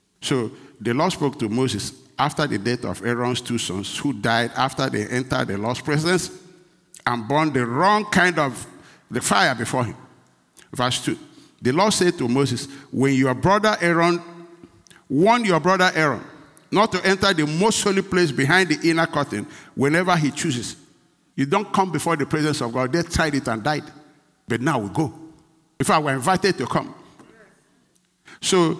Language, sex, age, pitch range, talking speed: English, male, 60-79, 135-185 Hz, 175 wpm